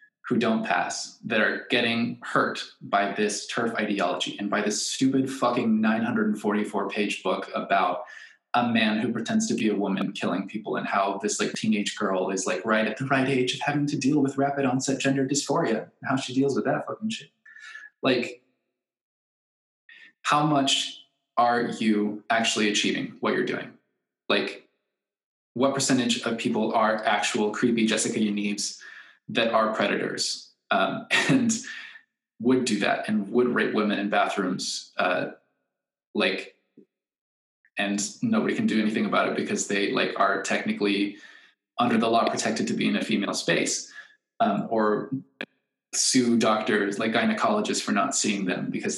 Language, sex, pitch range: English, male, 105-145 Hz